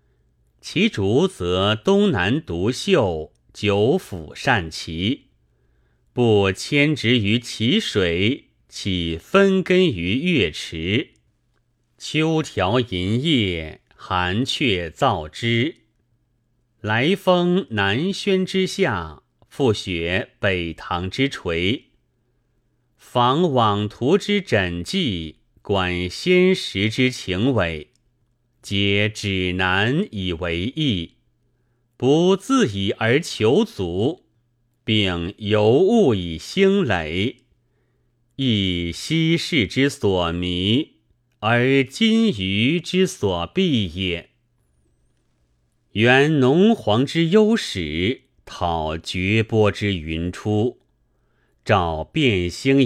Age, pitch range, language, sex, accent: 30-49, 90-135 Hz, Chinese, male, native